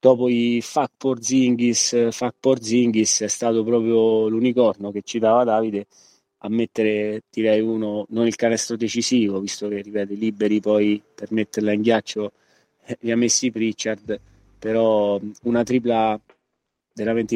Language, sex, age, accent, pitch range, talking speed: Italian, male, 20-39, native, 105-115 Hz, 130 wpm